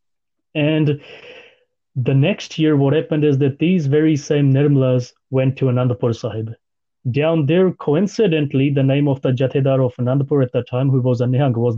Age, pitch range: 30-49, 125-155 Hz